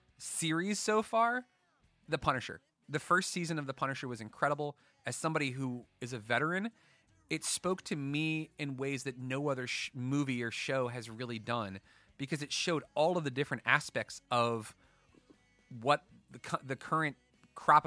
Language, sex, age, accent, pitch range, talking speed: English, male, 30-49, American, 115-150 Hz, 160 wpm